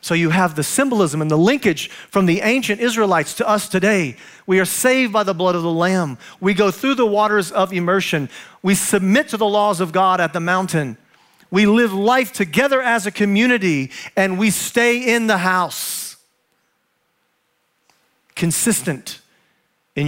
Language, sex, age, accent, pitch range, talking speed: English, male, 40-59, American, 170-215 Hz, 165 wpm